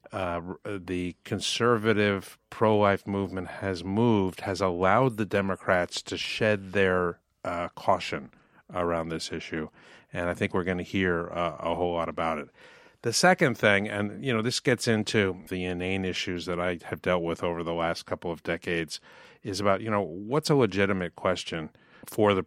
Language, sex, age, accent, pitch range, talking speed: English, male, 50-69, American, 85-105 Hz, 175 wpm